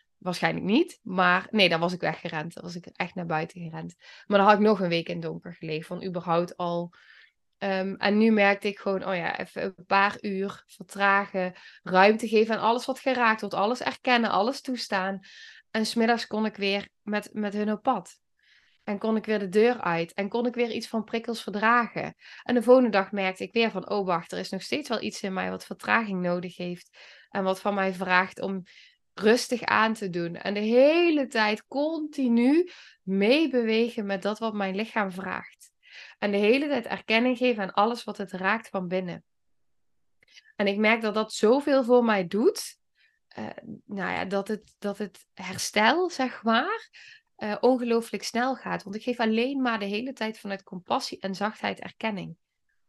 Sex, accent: female, Dutch